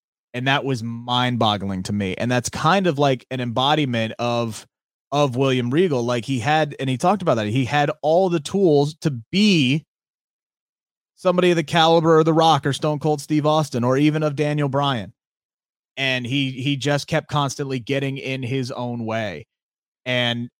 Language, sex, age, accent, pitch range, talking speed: English, male, 30-49, American, 120-150 Hz, 180 wpm